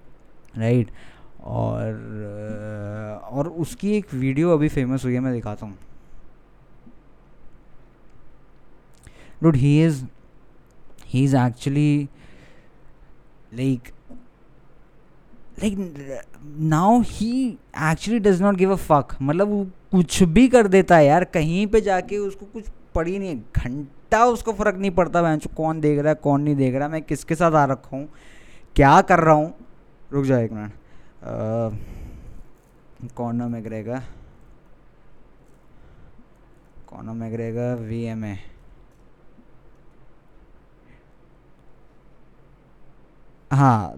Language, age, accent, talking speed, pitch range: Hindi, 20-39, native, 110 wpm, 120-165 Hz